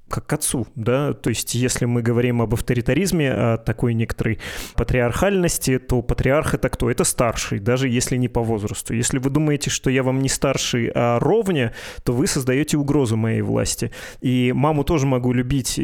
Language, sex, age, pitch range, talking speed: Russian, male, 20-39, 120-140 Hz, 180 wpm